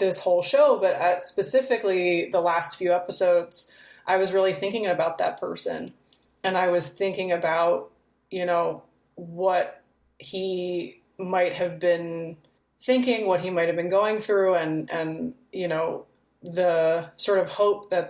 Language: English